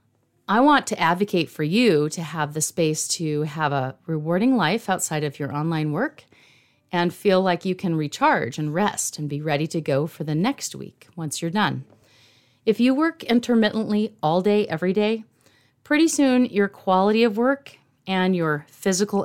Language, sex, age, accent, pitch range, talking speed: English, female, 40-59, American, 145-200 Hz, 180 wpm